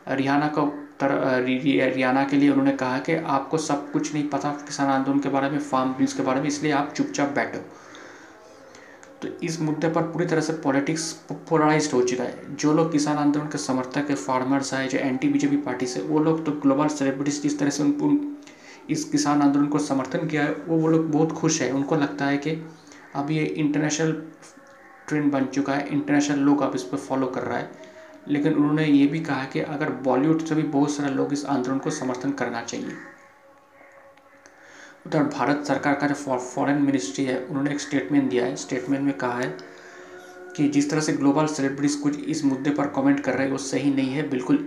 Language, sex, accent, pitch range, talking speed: Hindi, male, native, 135-160 Hz, 205 wpm